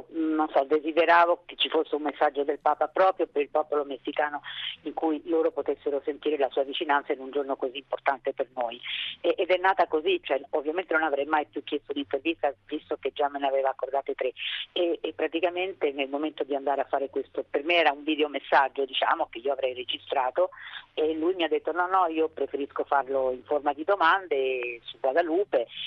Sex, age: female, 40-59